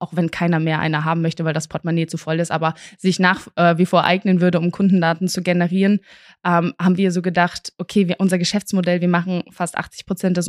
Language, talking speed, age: German, 225 wpm, 20-39